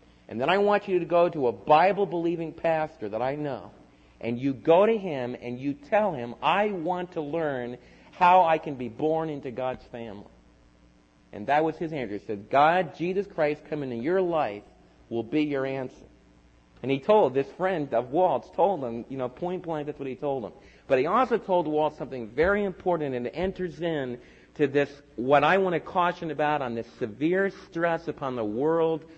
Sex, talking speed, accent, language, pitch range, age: male, 200 wpm, American, English, 130-180 Hz, 40-59